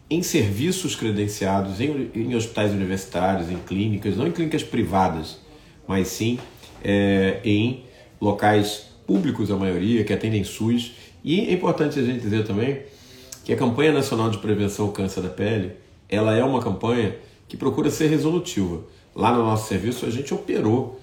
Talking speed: 155 wpm